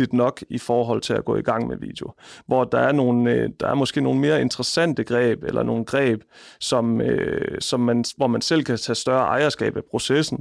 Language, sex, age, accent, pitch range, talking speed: Danish, male, 30-49, native, 120-140 Hz, 210 wpm